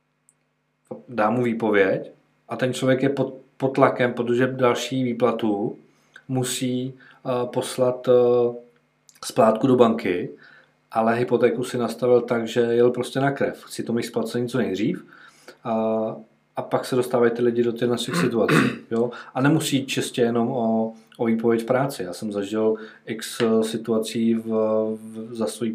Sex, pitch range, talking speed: male, 110-125 Hz, 155 wpm